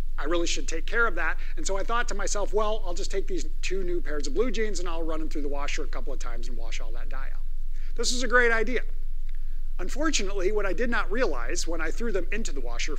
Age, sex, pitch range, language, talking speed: 50-69, male, 175-285 Hz, English, 275 wpm